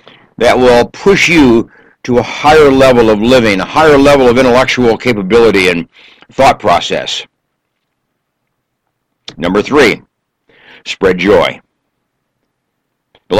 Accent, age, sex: American, 60-79, male